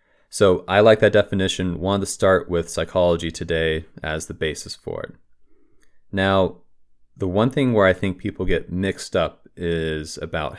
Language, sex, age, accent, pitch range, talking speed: English, male, 30-49, American, 80-95 Hz, 165 wpm